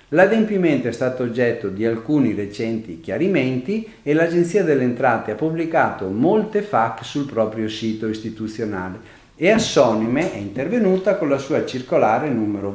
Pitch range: 110-160 Hz